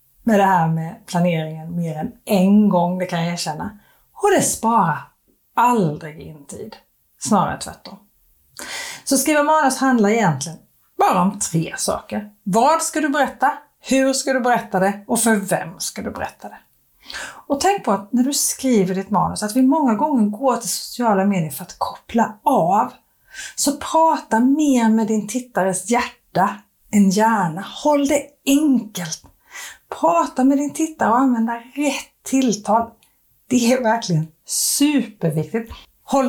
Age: 30-49